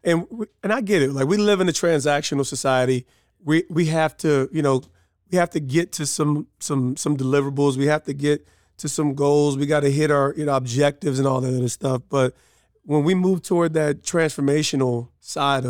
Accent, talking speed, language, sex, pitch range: American, 210 wpm, English, male, 135-160 Hz